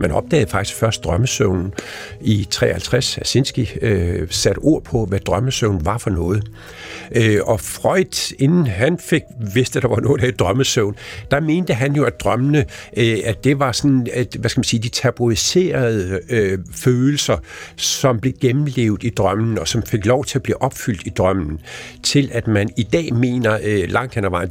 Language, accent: Danish, native